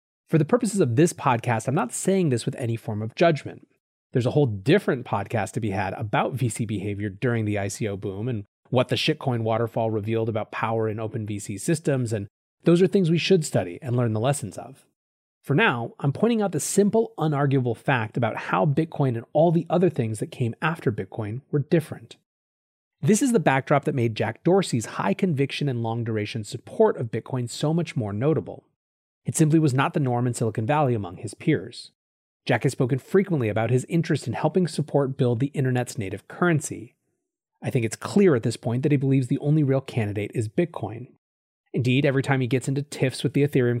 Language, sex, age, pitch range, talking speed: English, male, 30-49, 115-150 Hz, 205 wpm